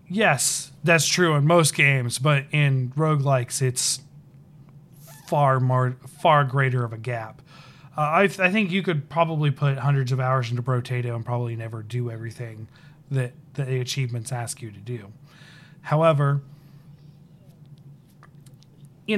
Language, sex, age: English, male, 30-49